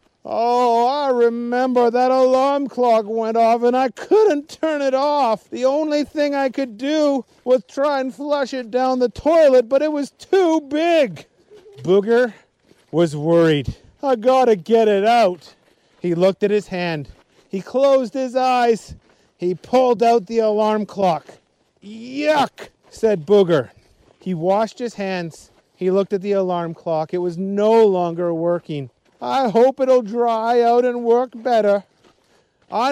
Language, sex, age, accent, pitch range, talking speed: English, male, 40-59, American, 185-260 Hz, 150 wpm